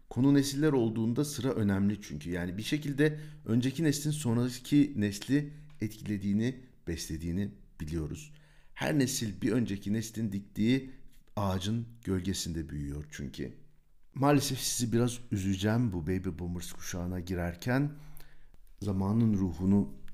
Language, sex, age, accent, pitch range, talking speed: Turkish, male, 60-79, native, 90-135 Hz, 110 wpm